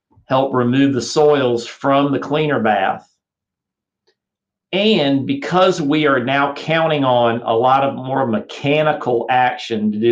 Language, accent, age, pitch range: English, American, 50-69, 115-130 Hz